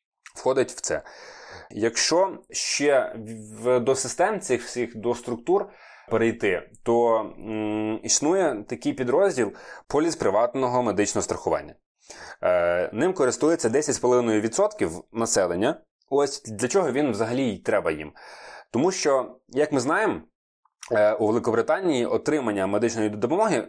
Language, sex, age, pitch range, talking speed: Ukrainian, male, 20-39, 110-135 Hz, 115 wpm